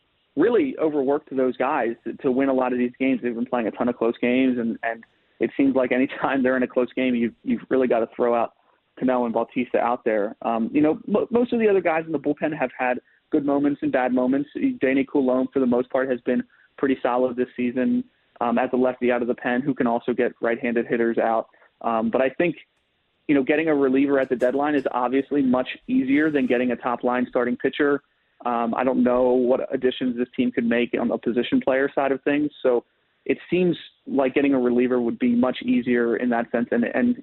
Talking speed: 230 wpm